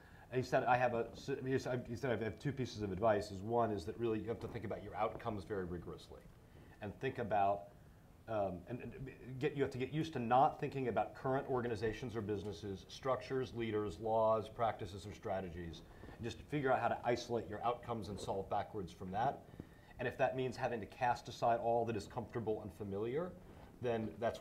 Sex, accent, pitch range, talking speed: male, American, 95-125 Hz, 195 wpm